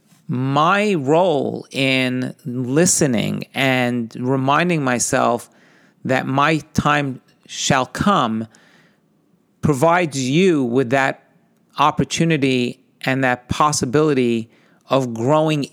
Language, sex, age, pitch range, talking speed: English, male, 40-59, 125-150 Hz, 85 wpm